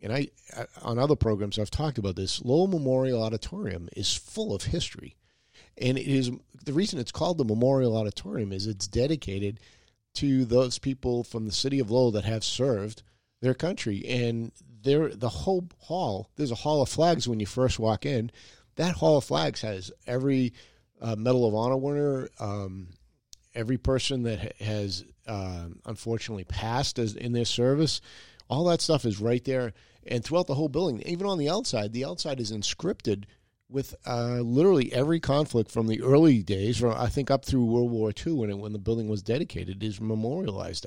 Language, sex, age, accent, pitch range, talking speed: English, male, 50-69, American, 105-130 Hz, 185 wpm